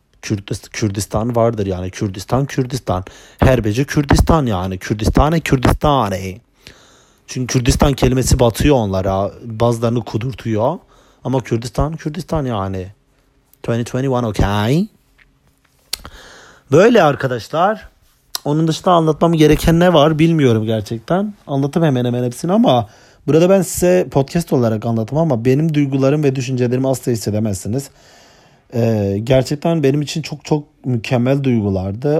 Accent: native